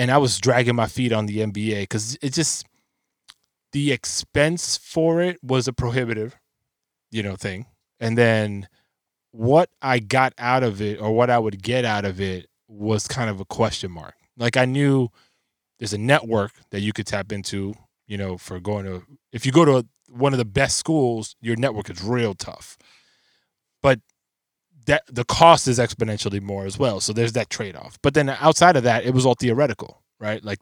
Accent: American